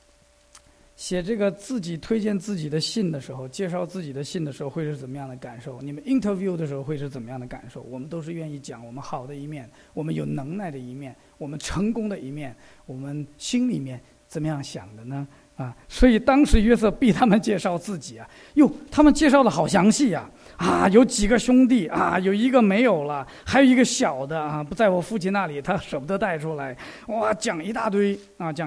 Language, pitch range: English, 145-215 Hz